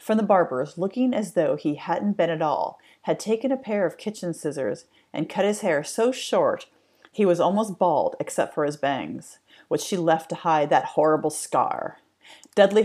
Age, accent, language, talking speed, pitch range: 40-59, American, English, 190 wpm, 160-205 Hz